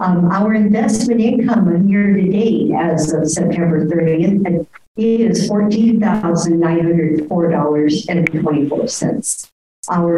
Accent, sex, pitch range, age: American, male, 160-195 Hz, 60-79